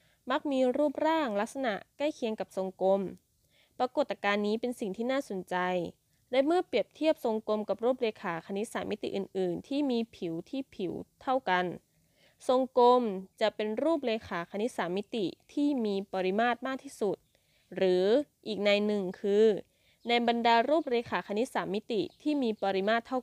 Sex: female